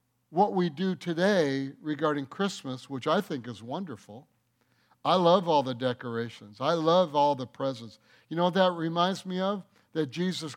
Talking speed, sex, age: 170 wpm, male, 60-79